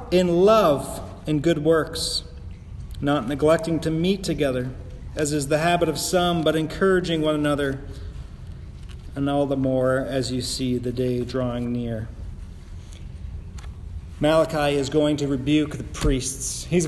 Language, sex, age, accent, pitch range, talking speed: English, male, 30-49, American, 125-170 Hz, 140 wpm